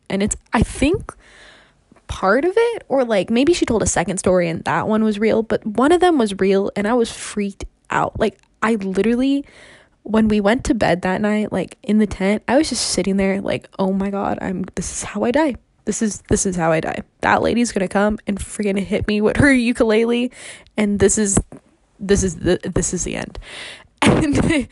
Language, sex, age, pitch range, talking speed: English, female, 20-39, 185-230 Hz, 215 wpm